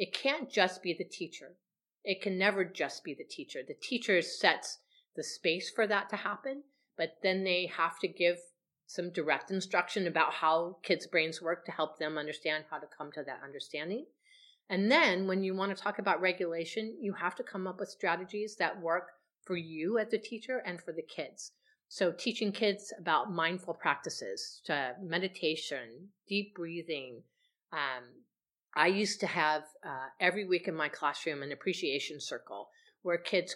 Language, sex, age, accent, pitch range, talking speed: English, female, 40-59, American, 165-210 Hz, 175 wpm